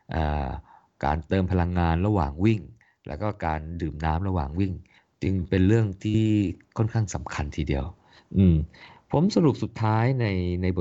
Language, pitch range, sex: Thai, 80-95 Hz, male